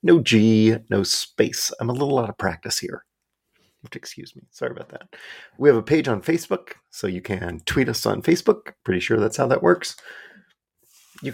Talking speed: 190 wpm